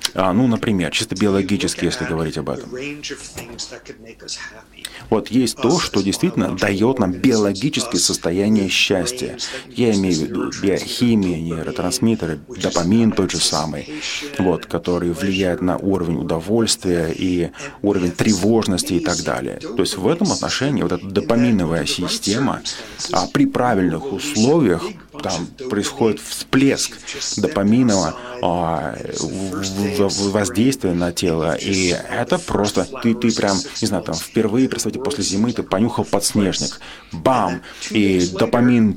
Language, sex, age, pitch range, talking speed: Russian, male, 30-49, 90-115 Hz, 120 wpm